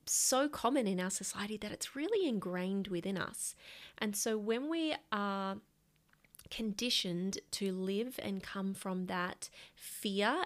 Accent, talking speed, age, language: Australian, 140 wpm, 20-39, English